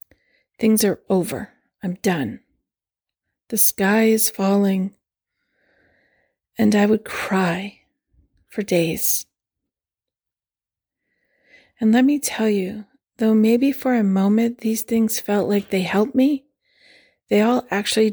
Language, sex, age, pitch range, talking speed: English, female, 40-59, 185-225 Hz, 115 wpm